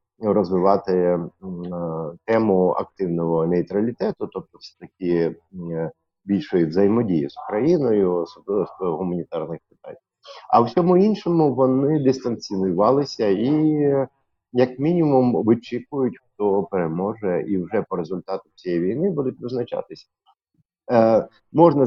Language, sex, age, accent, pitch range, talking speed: Ukrainian, male, 50-69, native, 90-135 Hz, 105 wpm